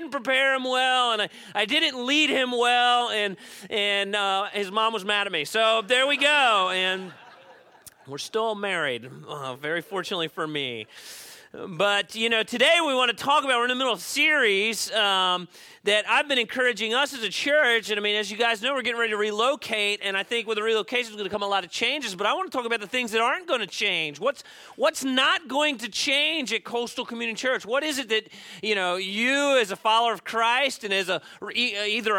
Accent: American